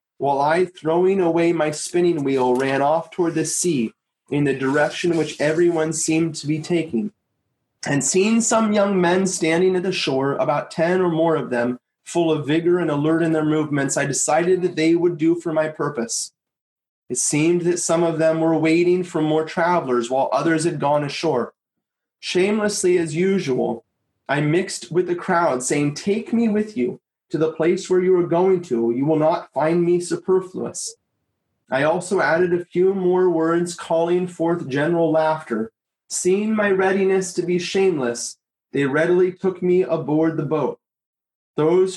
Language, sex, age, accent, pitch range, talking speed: English, male, 30-49, American, 150-180 Hz, 175 wpm